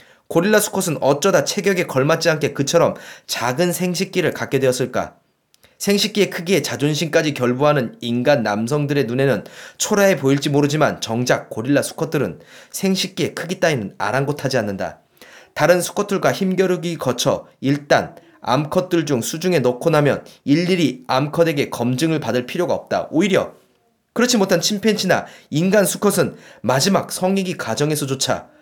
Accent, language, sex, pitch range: native, Korean, male, 130-180 Hz